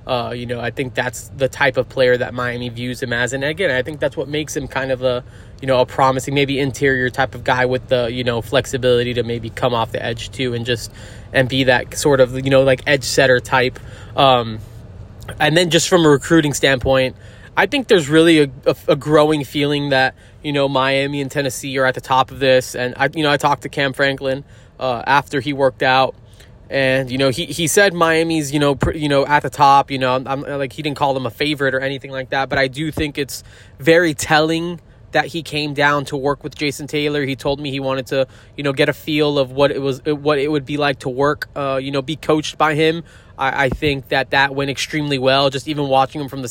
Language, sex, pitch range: English, male, 125-145 Hz